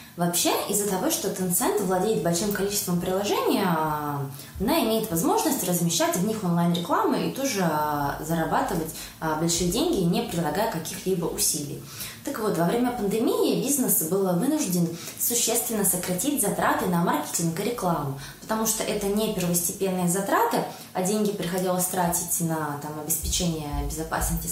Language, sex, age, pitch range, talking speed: Turkish, female, 20-39, 165-215 Hz, 130 wpm